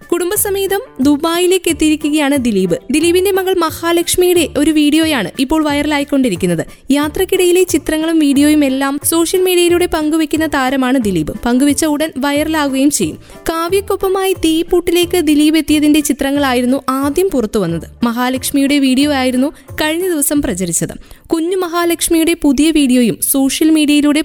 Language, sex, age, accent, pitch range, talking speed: Malayalam, female, 20-39, native, 270-330 Hz, 110 wpm